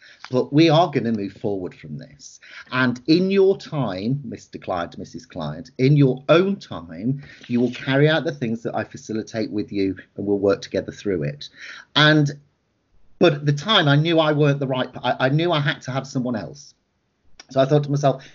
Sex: male